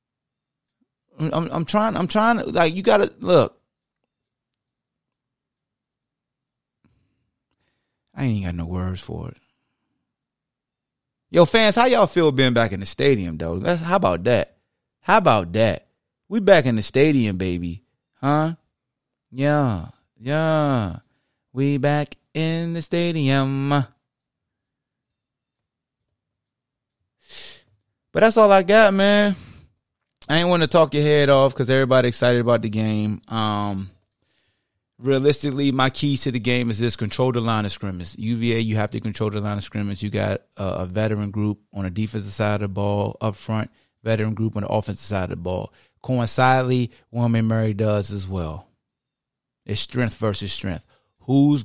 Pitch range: 105-140 Hz